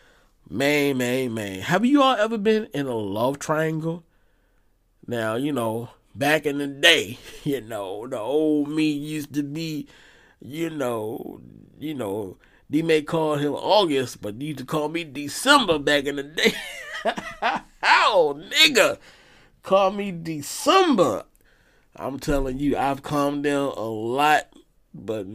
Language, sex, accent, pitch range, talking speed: English, male, American, 120-165 Hz, 145 wpm